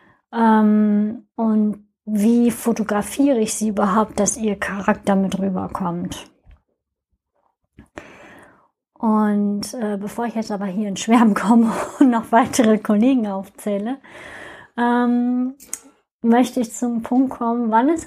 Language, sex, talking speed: German, female, 105 wpm